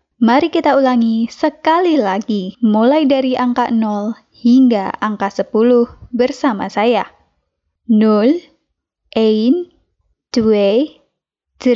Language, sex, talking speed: Indonesian, female, 85 wpm